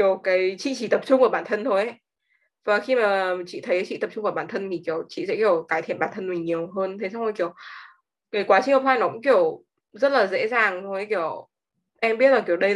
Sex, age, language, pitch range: female, 20-39, Vietnamese, 175-250 Hz